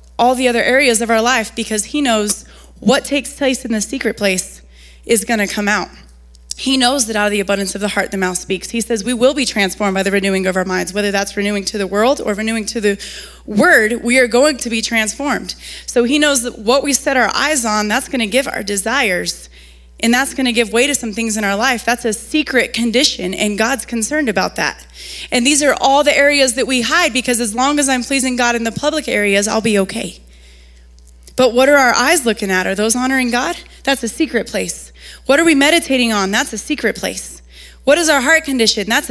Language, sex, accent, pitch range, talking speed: English, female, American, 185-260 Hz, 235 wpm